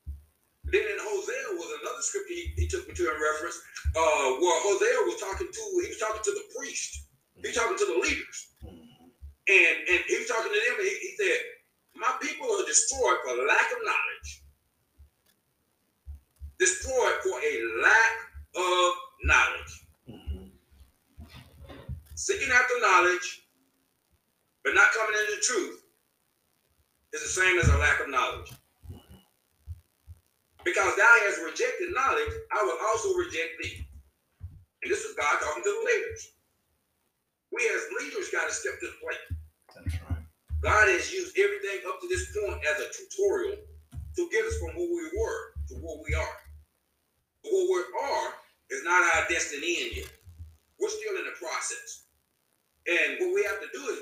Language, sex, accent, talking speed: English, male, American, 160 wpm